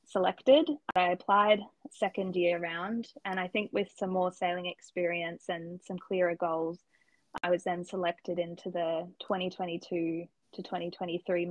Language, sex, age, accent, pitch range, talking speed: English, female, 10-29, Australian, 175-195 Hz, 140 wpm